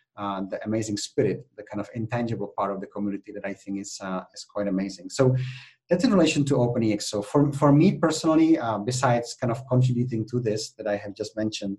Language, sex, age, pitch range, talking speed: English, male, 30-49, 100-125 Hz, 225 wpm